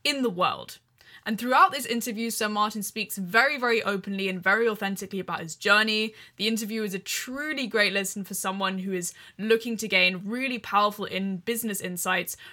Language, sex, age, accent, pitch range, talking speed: English, female, 10-29, British, 195-235 Hz, 180 wpm